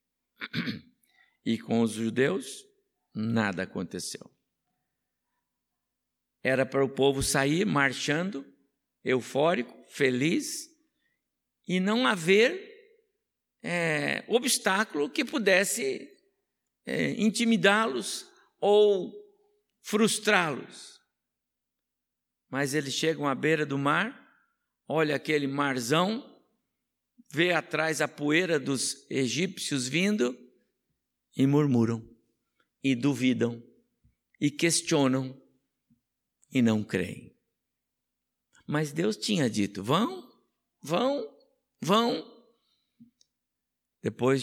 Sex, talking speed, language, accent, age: male, 75 wpm, Portuguese, Brazilian, 60-79